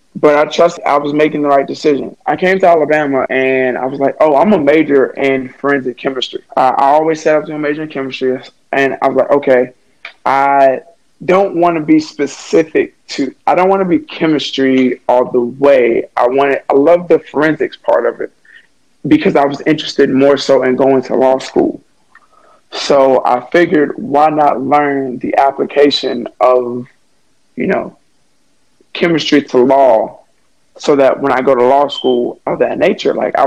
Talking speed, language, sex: 185 wpm, English, male